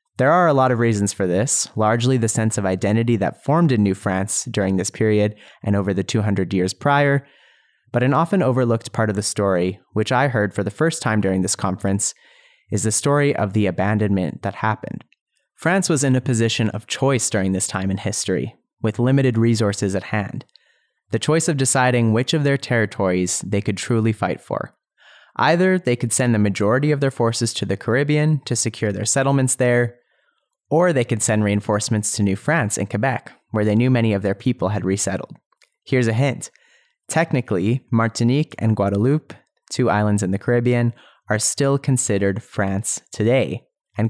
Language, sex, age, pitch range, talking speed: English, male, 30-49, 100-130 Hz, 185 wpm